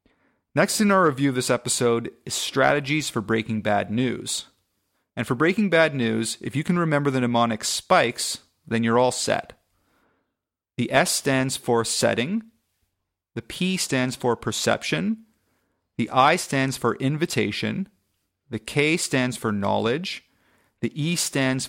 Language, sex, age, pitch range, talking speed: English, male, 30-49, 110-145 Hz, 145 wpm